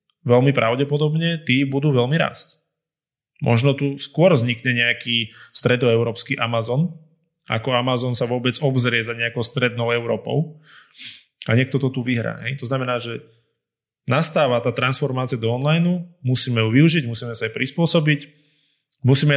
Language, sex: Slovak, male